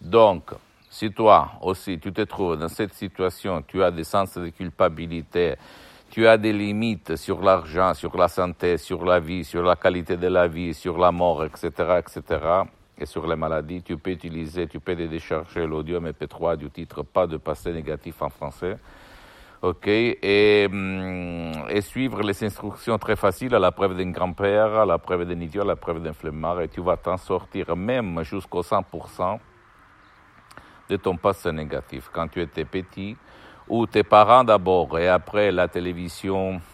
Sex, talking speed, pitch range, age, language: male, 175 wpm, 85-100 Hz, 50-69, Italian